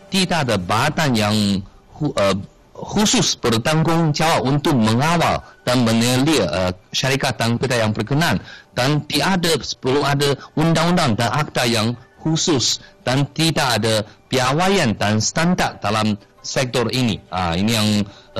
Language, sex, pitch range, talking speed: Malay, male, 105-145 Hz, 125 wpm